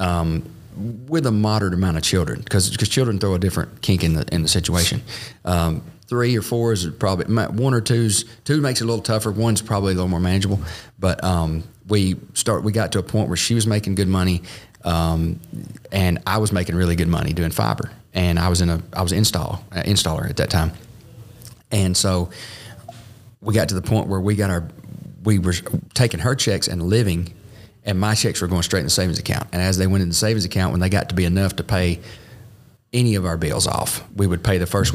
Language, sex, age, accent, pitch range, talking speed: English, male, 30-49, American, 90-110 Hz, 225 wpm